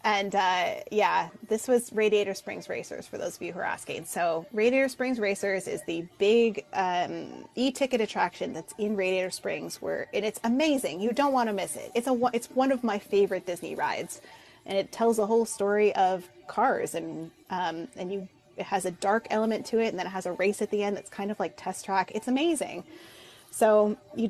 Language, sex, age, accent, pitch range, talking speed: English, female, 20-39, American, 185-230 Hz, 210 wpm